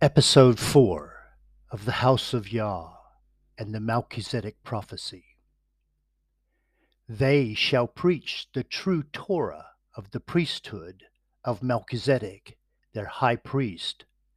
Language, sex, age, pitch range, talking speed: English, male, 50-69, 105-140 Hz, 105 wpm